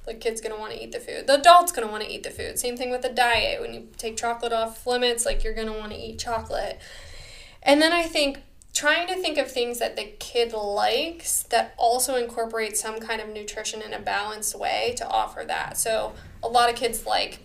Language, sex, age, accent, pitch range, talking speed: English, female, 10-29, American, 215-250 Hz, 240 wpm